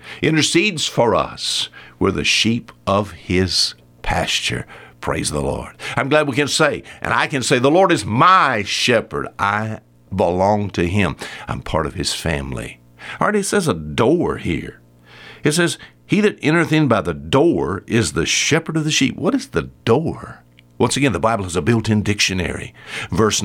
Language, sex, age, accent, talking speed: English, male, 60-79, American, 180 wpm